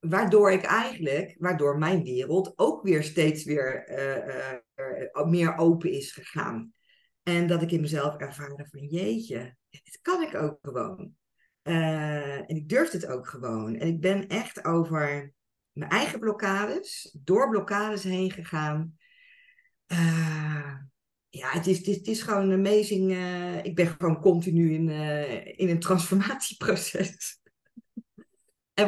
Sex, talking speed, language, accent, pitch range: female, 145 wpm, Dutch, Dutch, 155-200 Hz